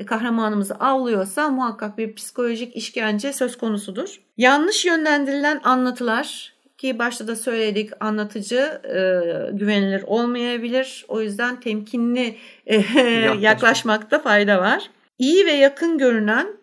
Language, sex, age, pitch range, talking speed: Turkish, female, 60-79, 205-255 Hz, 110 wpm